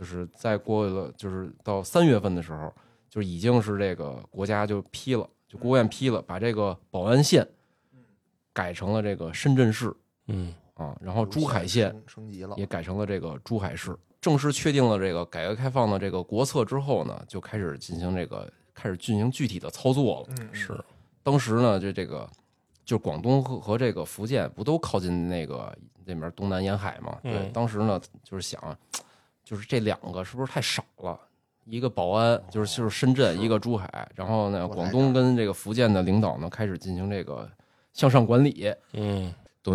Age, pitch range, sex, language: 20-39, 95-125 Hz, male, Chinese